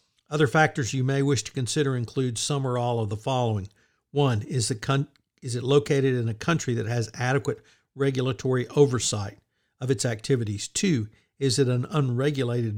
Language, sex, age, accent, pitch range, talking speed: English, male, 60-79, American, 115-140 Hz, 165 wpm